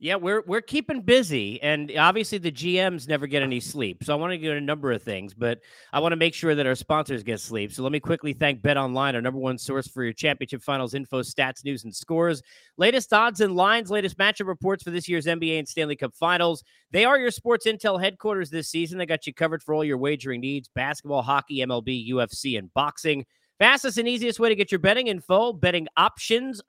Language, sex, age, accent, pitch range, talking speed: English, male, 40-59, American, 140-195 Hz, 230 wpm